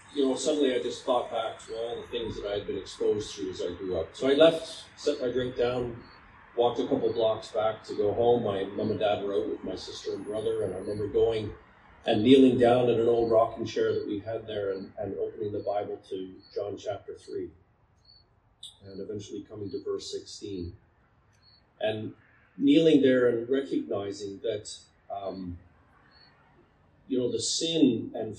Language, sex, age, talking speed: English, male, 40-59, 190 wpm